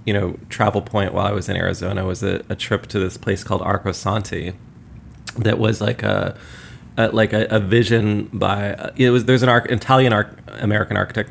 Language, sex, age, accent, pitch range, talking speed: English, male, 30-49, American, 100-120 Hz, 185 wpm